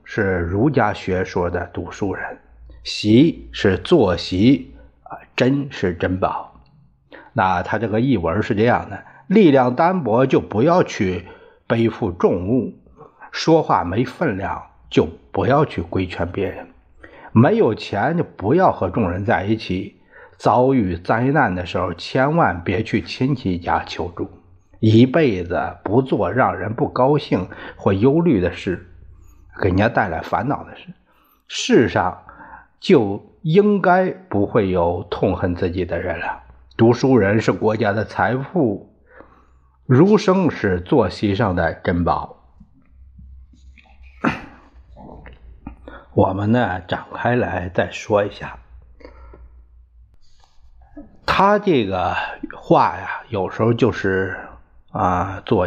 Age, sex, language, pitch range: 50-69, male, Chinese, 80-115 Hz